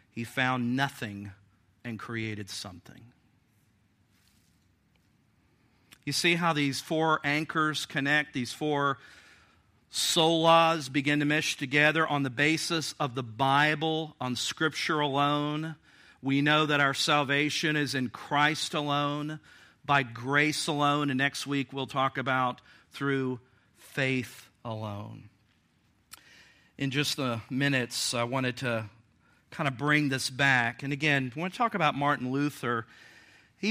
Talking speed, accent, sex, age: 130 wpm, American, male, 50-69